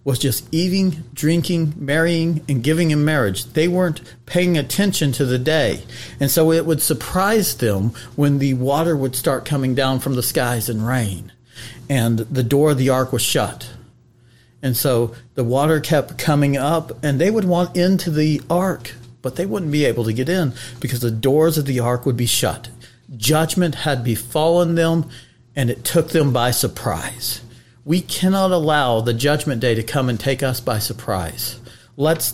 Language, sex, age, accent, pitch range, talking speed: English, male, 40-59, American, 125-165 Hz, 180 wpm